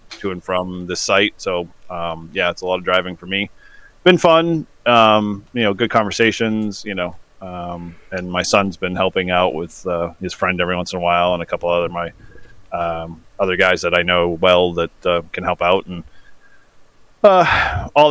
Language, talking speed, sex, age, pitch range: English, 200 wpm, male, 30-49, 90-105 Hz